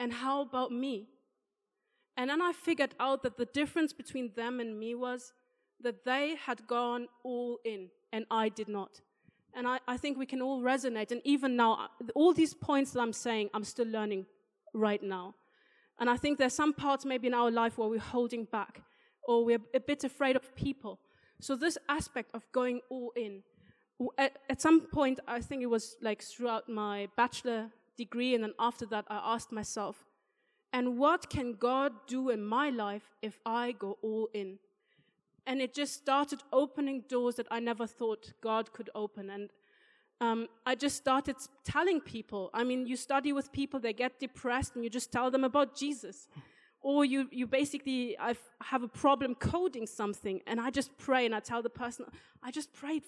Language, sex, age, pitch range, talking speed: Danish, female, 20-39, 225-270 Hz, 190 wpm